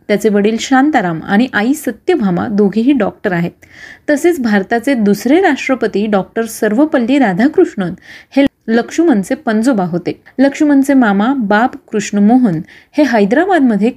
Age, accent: 30-49, native